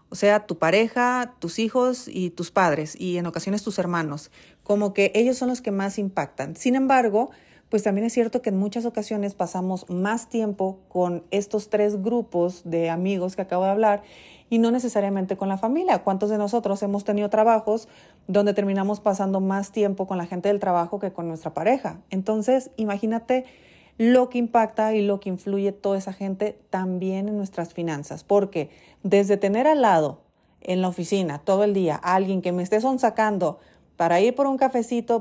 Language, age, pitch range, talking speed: Spanish, 30-49, 195-230 Hz, 185 wpm